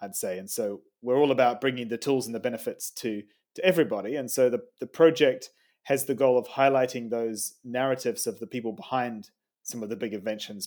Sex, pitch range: male, 115-145 Hz